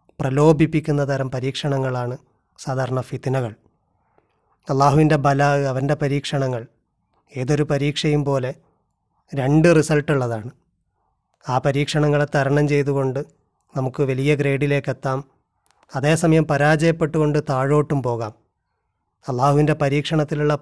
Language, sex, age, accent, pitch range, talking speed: Malayalam, male, 30-49, native, 135-160 Hz, 80 wpm